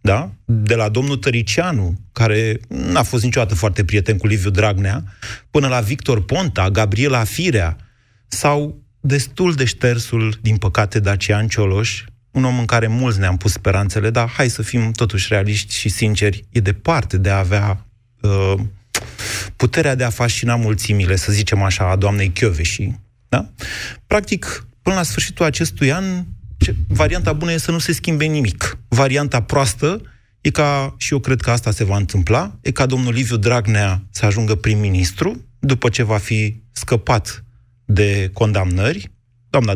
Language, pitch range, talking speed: Romanian, 100-130 Hz, 160 wpm